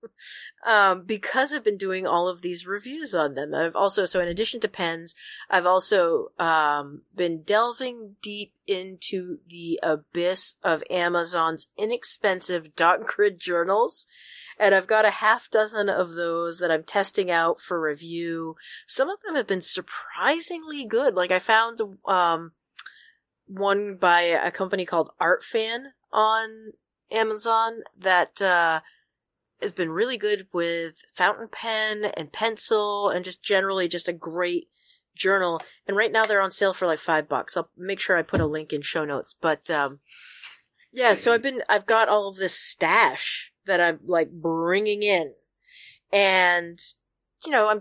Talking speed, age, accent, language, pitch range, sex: 160 wpm, 40-59, American, English, 170-220 Hz, female